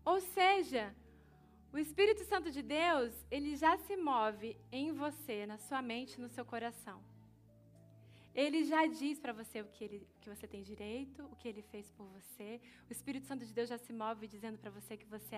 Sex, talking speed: female, 190 wpm